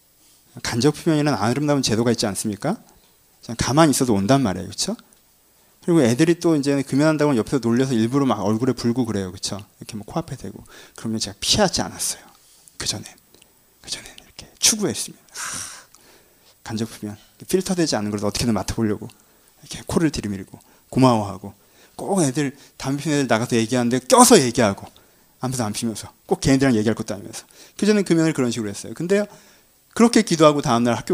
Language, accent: Korean, native